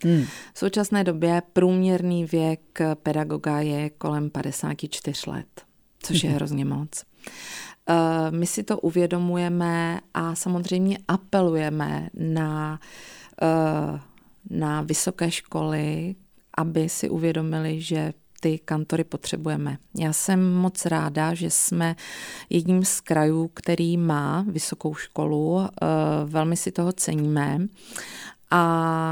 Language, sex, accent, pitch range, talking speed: Czech, female, native, 160-180 Hz, 105 wpm